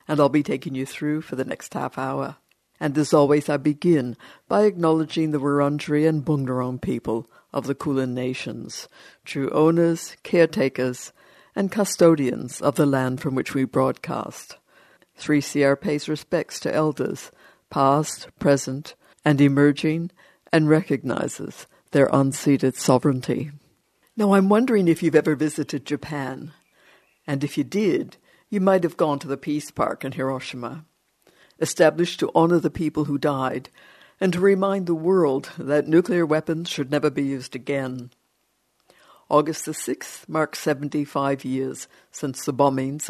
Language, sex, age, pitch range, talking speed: English, female, 60-79, 135-160 Hz, 145 wpm